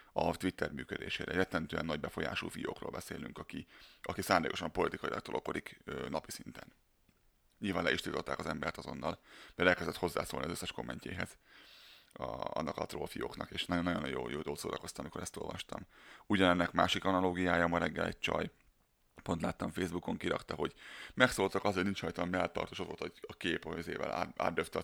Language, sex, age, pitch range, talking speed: Hungarian, male, 30-49, 90-100 Hz, 160 wpm